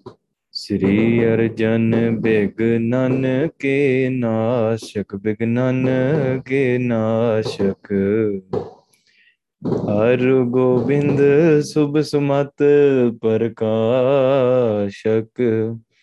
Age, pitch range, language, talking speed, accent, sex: 20-39, 110-130 Hz, English, 50 wpm, Indian, male